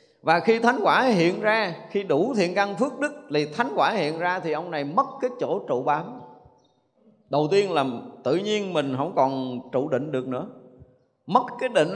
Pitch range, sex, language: 150-245 Hz, male, Vietnamese